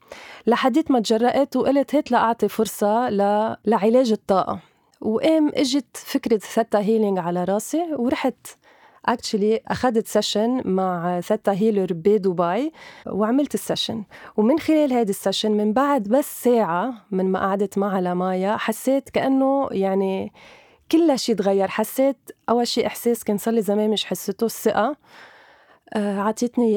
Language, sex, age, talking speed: Arabic, female, 20-39, 130 wpm